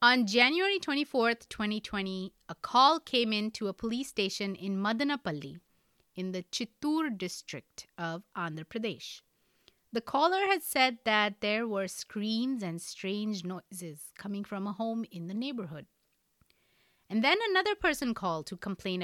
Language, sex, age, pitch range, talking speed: English, female, 30-49, 175-245 Hz, 150 wpm